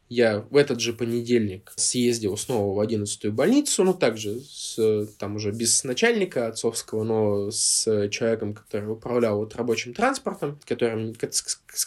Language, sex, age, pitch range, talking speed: Russian, male, 20-39, 110-135 Hz, 150 wpm